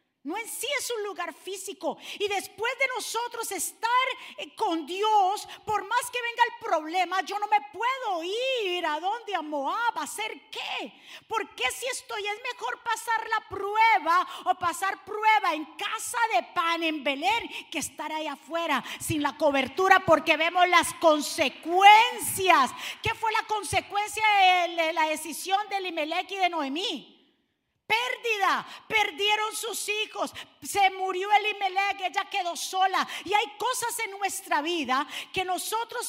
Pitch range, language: 325-425 Hz, Spanish